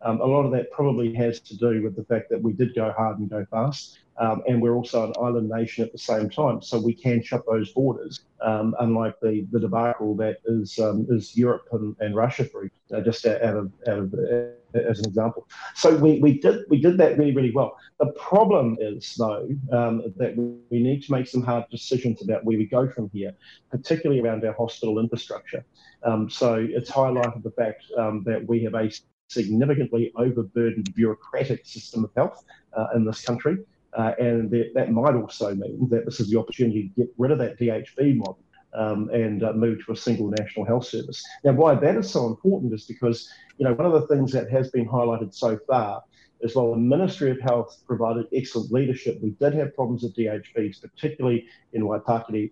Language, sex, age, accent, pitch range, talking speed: English, male, 40-59, Australian, 110-125 Hz, 210 wpm